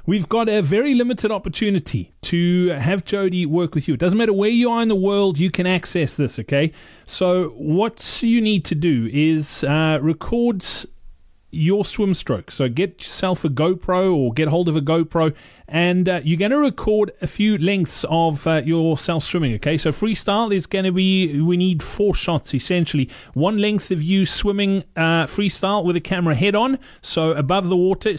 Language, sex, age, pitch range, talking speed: English, male, 30-49, 155-190 Hz, 190 wpm